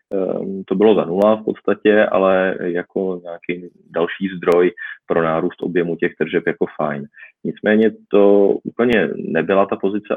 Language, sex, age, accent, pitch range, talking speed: Czech, male, 20-39, native, 90-105 Hz, 140 wpm